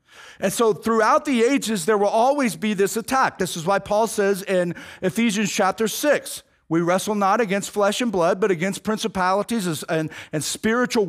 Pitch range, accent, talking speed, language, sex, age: 180-230 Hz, American, 180 wpm, English, male, 40-59